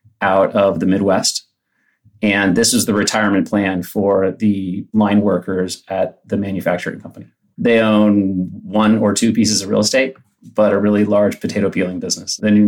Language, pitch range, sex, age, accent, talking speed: English, 100-110 Hz, male, 30-49, American, 170 wpm